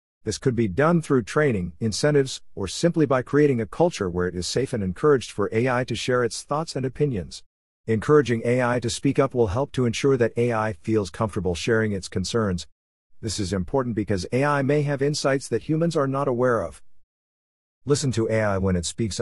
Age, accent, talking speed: 50-69, American, 195 wpm